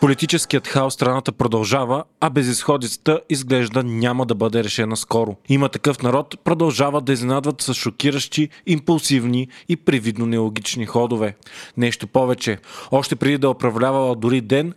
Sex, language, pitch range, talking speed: male, Bulgarian, 120-150 Hz, 135 wpm